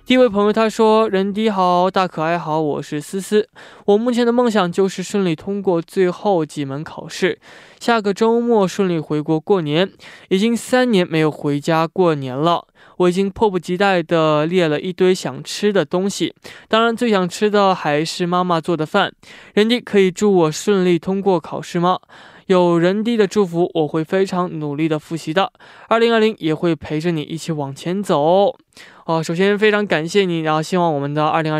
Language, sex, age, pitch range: Korean, male, 20-39, 155-200 Hz